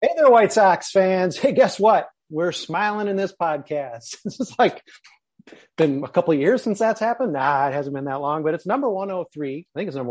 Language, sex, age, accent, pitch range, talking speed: English, male, 30-49, American, 130-175 Hz, 225 wpm